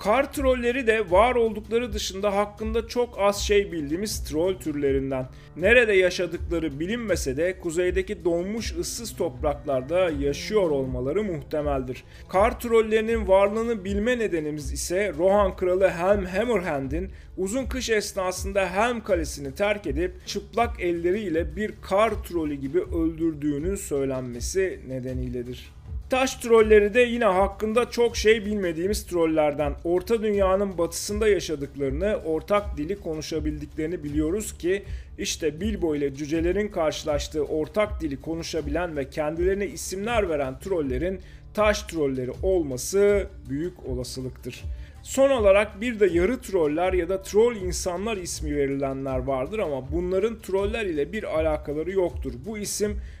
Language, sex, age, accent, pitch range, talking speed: Turkish, male, 40-59, native, 150-215 Hz, 120 wpm